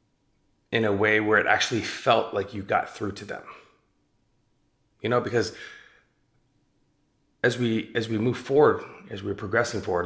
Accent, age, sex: American, 30-49, male